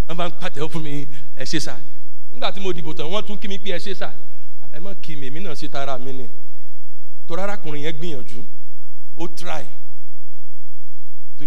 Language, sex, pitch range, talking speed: English, male, 135-170 Hz, 90 wpm